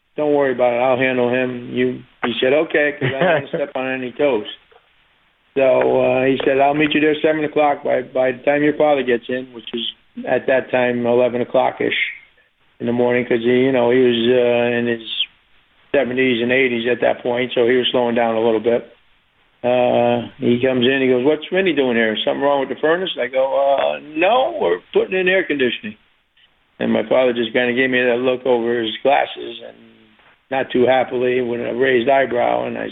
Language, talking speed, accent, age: English, 215 wpm, American, 40-59